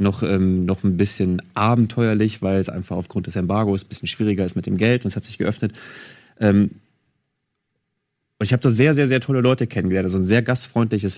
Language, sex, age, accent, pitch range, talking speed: German, male, 30-49, German, 100-125 Hz, 210 wpm